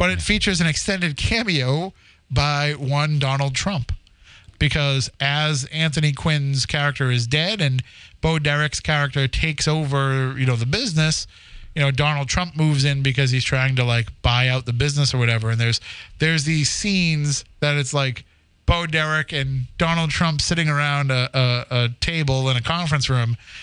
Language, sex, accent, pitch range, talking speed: English, male, American, 130-155 Hz, 170 wpm